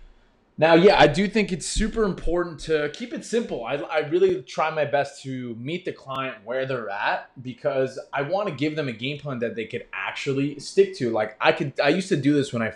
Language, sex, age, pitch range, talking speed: English, male, 20-39, 120-155 Hz, 235 wpm